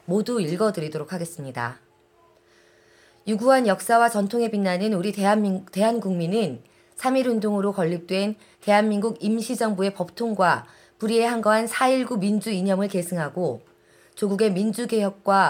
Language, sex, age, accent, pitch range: Korean, female, 30-49, native, 180-225 Hz